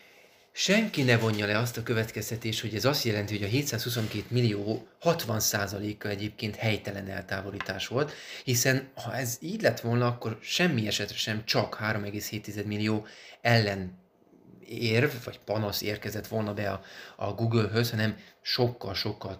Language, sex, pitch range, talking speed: Hungarian, male, 105-120 Hz, 140 wpm